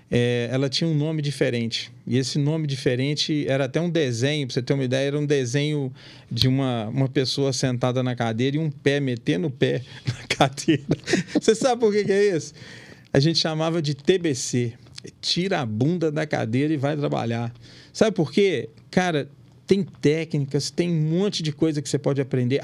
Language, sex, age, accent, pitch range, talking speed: Portuguese, male, 40-59, Brazilian, 140-185 Hz, 190 wpm